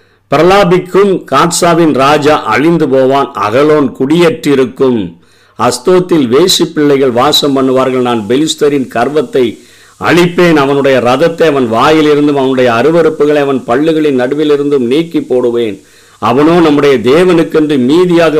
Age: 50-69